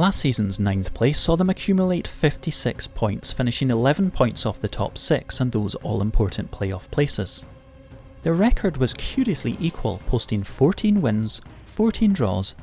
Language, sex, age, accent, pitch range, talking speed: English, male, 30-49, British, 105-135 Hz, 145 wpm